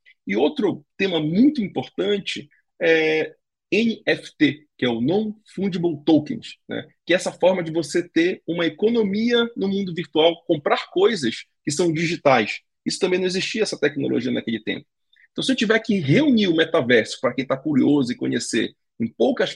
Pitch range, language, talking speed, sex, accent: 150-220 Hz, Portuguese, 165 wpm, male, Brazilian